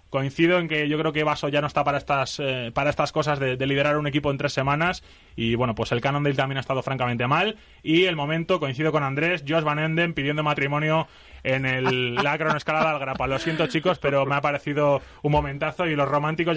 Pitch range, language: 140-160 Hz, Spanish